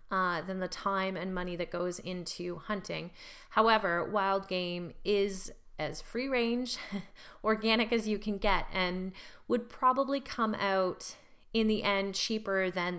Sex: female